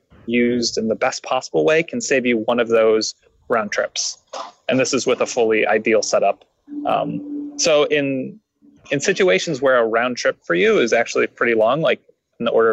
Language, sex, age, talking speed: English, male, 20-39, 195 wpm